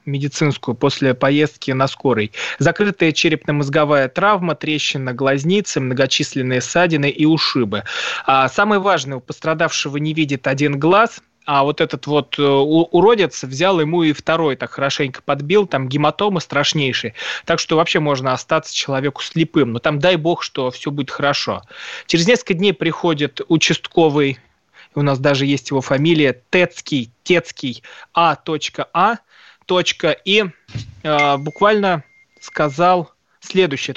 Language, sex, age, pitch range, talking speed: Russian, male, 20-39, 145-185 Hz, 125 wpm